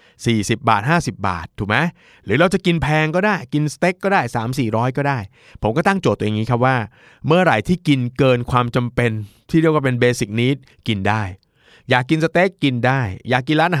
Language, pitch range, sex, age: Thai, 105-135 Hz, male, 20-39